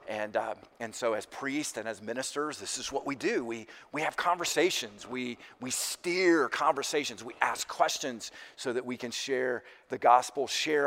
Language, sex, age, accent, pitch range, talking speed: English, male, 40-59, American, 125-195 Hz, 180 wpm